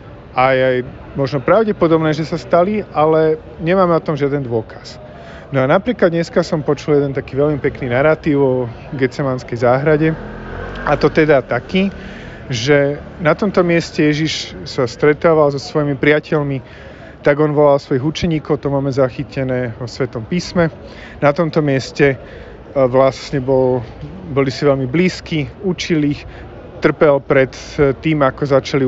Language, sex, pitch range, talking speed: Slovak, male, 130-155 Hz, 140 wpm